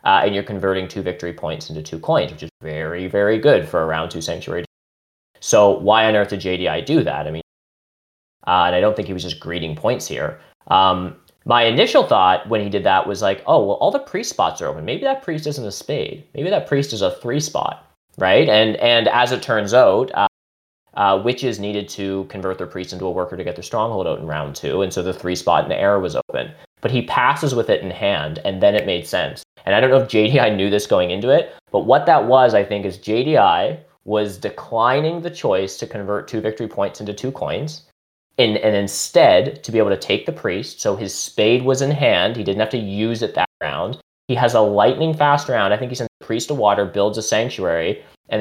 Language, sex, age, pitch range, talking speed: English, male, 20-39, 90-120 Hz, 240 wpm